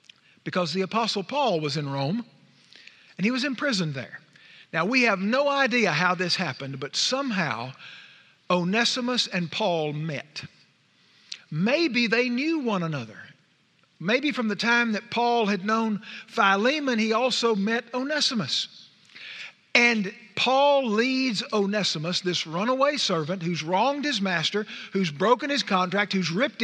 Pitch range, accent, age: 175-235 Hz, American, 50-69